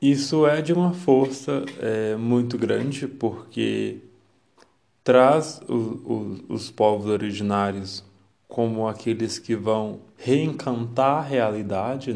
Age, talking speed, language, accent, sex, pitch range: 20-39, 95 wpm, Portuguese, Brazilian, male, 110-125 Hz